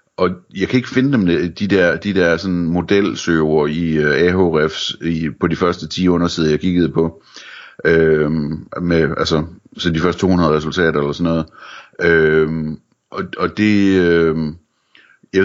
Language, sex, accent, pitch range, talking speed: Danish, male, native, 80-90 Hz, 150 wpm